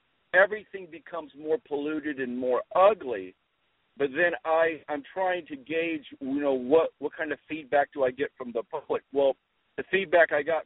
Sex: male